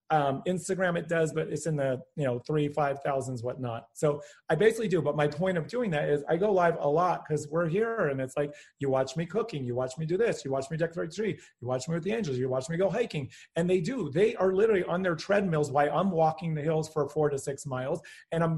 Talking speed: 265 wpm